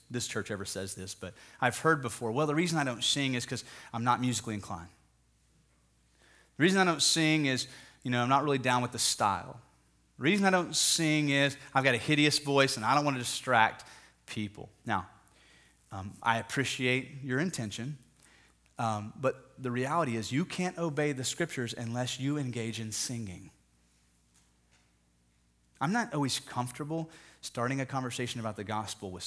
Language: English